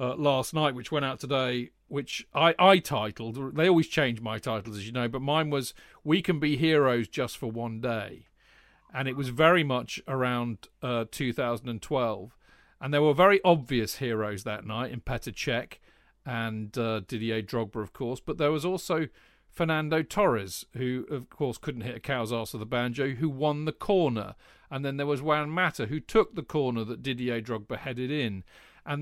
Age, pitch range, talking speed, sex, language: 40-59, 120-155 Hz, 190 wpm, male, English